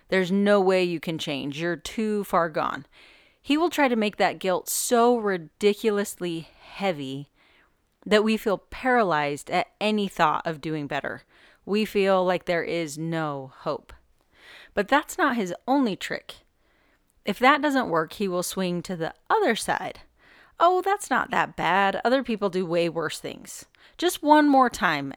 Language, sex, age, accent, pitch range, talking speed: English, female, 30-49, American, 165-220 Hz, 165 wpm